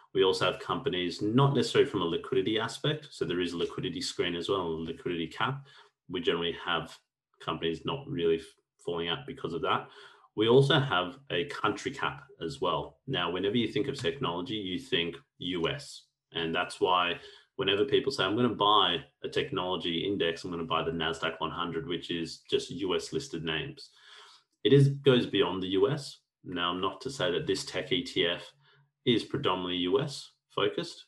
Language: English